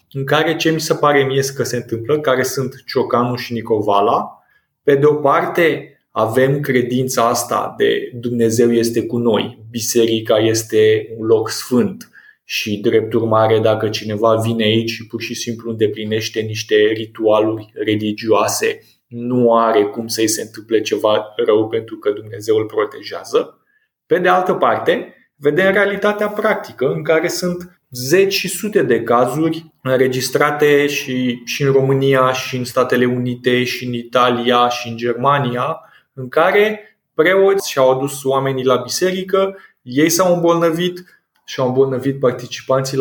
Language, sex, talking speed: Romanian, male, 145 wpm